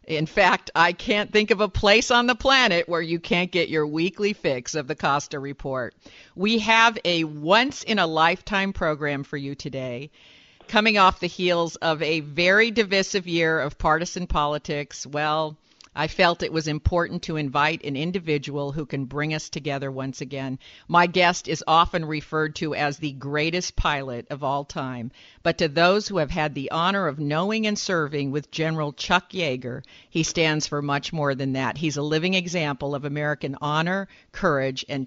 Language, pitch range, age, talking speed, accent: English, 145-180 Hz, 50-69, 180 wpm, American